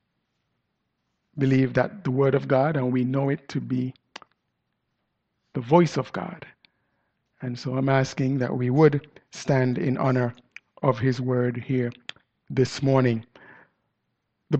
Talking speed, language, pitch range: 135 wpm, English, 140-185 Hz